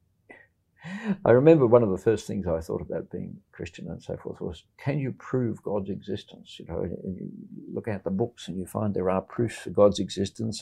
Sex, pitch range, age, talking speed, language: male, 95-110 Hz, 60-79, 215 wpm, English